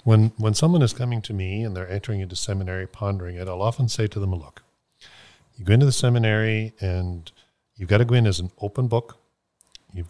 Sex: male